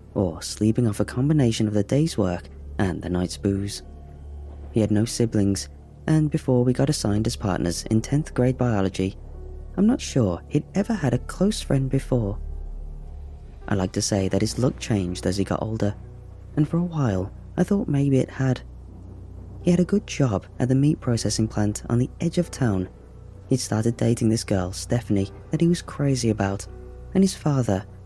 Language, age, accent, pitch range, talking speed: English, 20-39, British, 90-125 Hz, 190 wpm